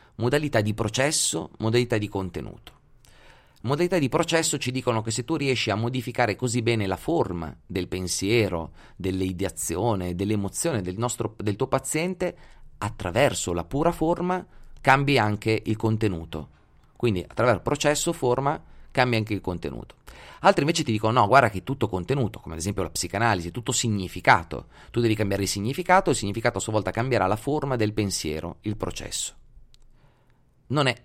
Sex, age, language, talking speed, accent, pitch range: male, 30-49, Italian, 155 wpm, native, 100-140 Hz